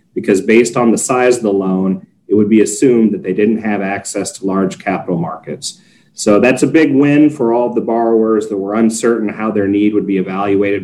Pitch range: 95-115 Hz